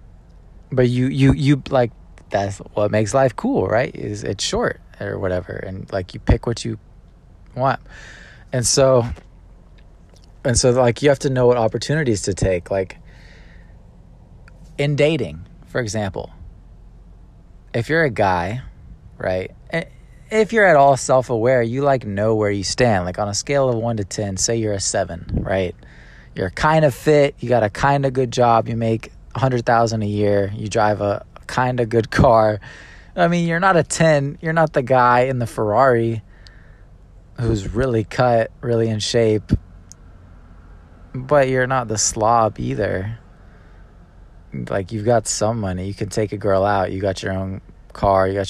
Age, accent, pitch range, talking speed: 20-39, American, 95-125 Hz, 170 wpm